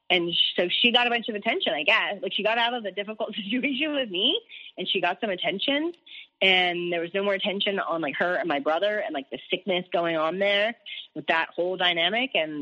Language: English